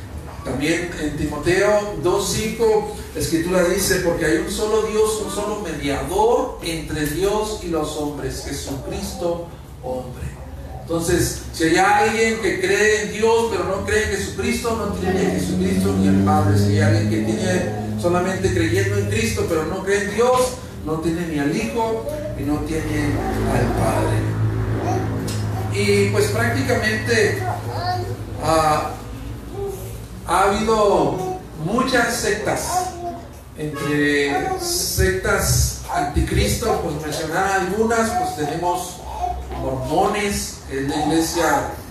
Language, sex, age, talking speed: Spanish, male, 50-69, 125 wpm